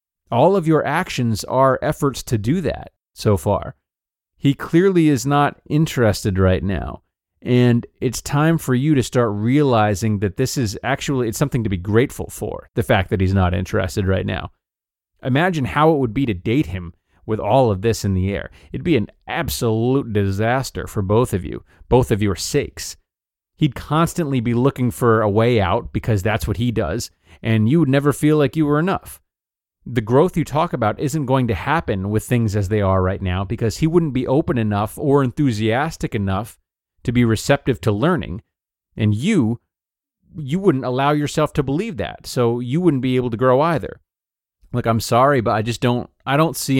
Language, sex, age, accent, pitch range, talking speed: English, male, 30-49, American, 105-140 Hz, 195 wpm